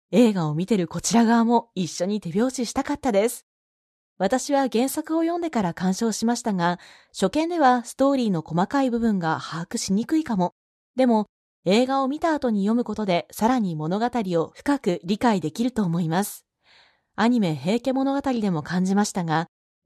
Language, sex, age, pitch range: Japanese, female, 20-39, 180-240 Hz